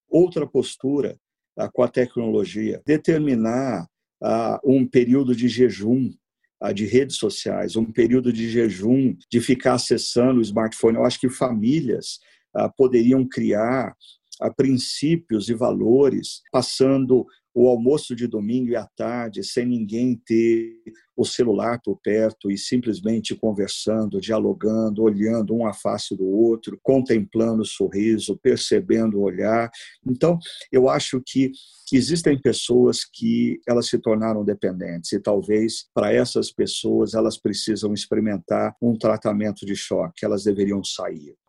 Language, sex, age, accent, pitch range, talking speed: Portuguese, male, 50-69, Brazilian, 110-130 Hz, 125 wpm